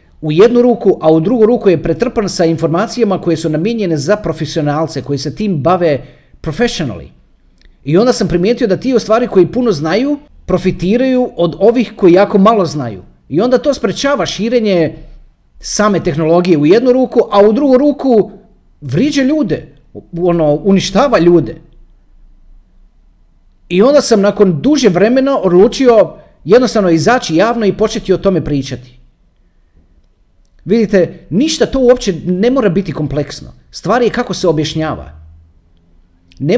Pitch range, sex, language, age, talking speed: 150-225 Hz, male, Croatian, 40-59, 140 wpm